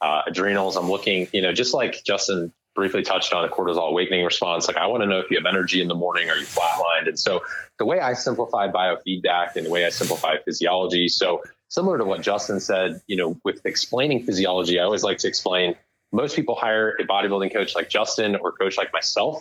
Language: English